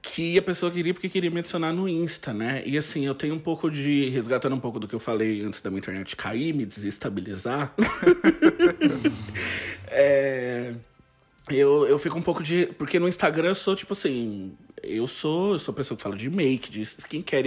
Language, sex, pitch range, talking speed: Portuguese, male, 130-185 Hz, 200 wpm